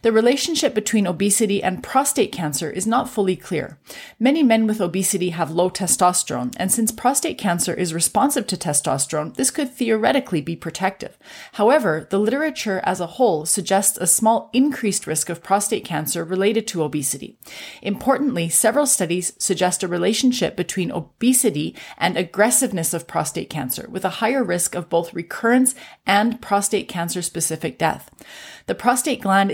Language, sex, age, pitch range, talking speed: English, female, 30-49, 170-230 Hz, 150 wpm